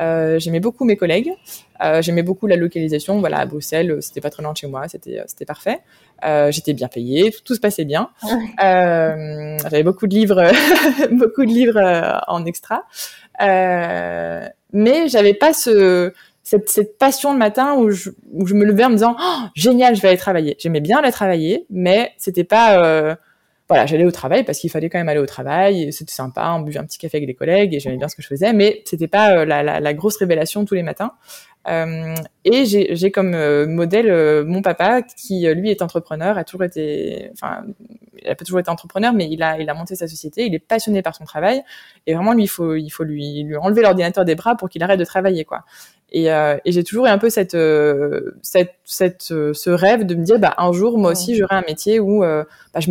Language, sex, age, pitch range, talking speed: French, female, 20-39, 160-210 Hz, 225 wpm